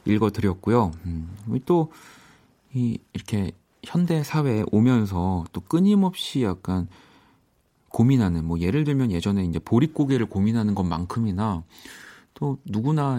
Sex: male